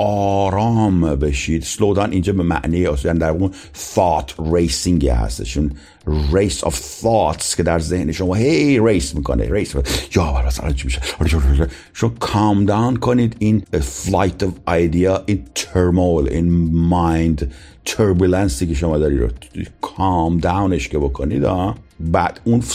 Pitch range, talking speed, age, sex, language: 80-105 Hz, 135 wpm, 50-69, male, Persian